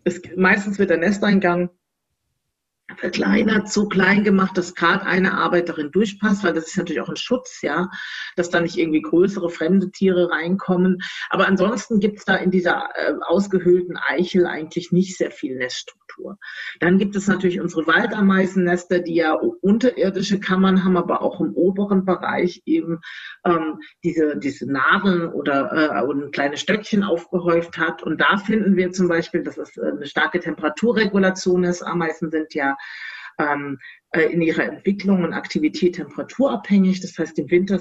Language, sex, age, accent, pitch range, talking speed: German, female, 50-69, German, 165-195 Hz, 160 wpm